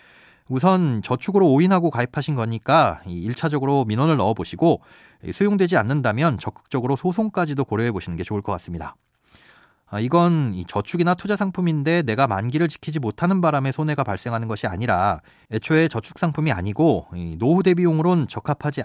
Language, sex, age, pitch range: Korean, male, 30-49, 115-160 Hz